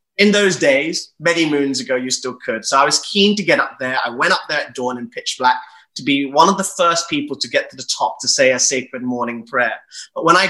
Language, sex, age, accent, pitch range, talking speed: English, male, 30-49, British, 130-175 Hz, 270 wpm